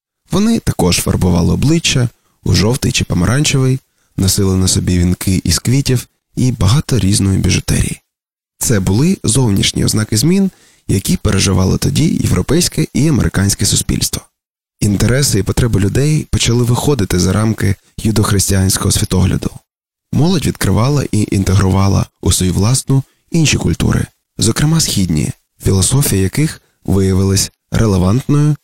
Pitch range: 95-135 Hz